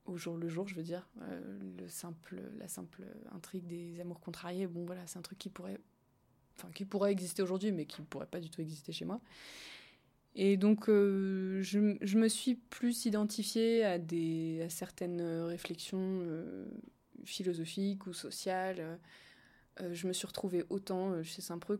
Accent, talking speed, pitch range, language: French, 175 wpm, 175-210 Hz, French